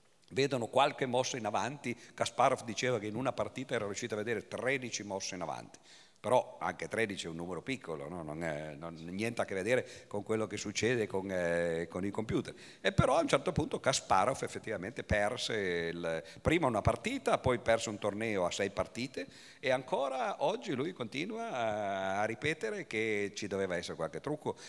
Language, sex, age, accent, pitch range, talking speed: Italian, male, 50-69, native, 100-135 Hz, 185 wpm